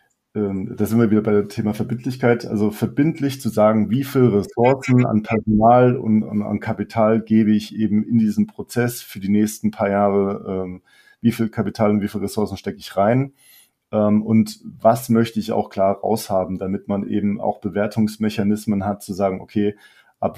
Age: 40-59